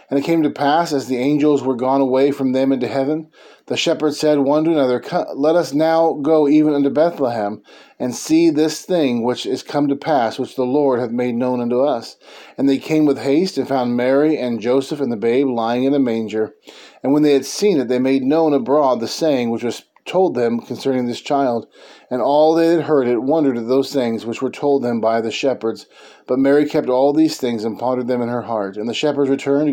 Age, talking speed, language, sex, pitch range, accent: 30-49, 230 wpm, English, male, 120-145 Hz, American